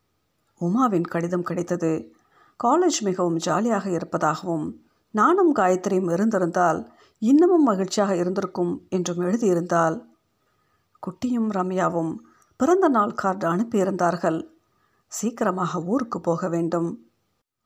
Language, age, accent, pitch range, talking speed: Tamil, 50-69, native, 175-230 Hz, 85 wpm